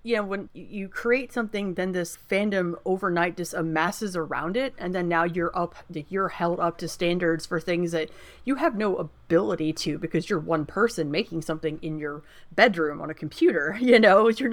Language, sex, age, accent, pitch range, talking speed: English, female, 30-49, American, 170-235 Hz, 195 wpm